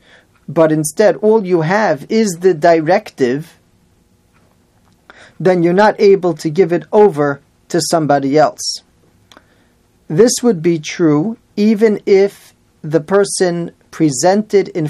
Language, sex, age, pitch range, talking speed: English, male, 40-59, 150-195 Hz, 115 wpm